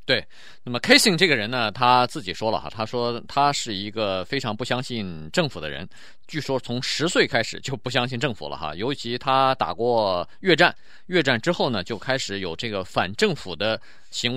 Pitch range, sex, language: 105-140 Hz, male, Chinese